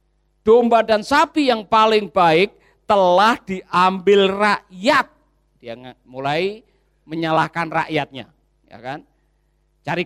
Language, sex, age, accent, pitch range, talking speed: Indonesian, male, 40-59, native, 175-275 Hz, 95 wpm